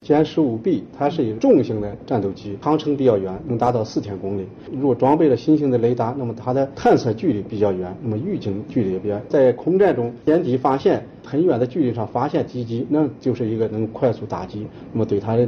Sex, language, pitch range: male, Chinese, 105-135 Hz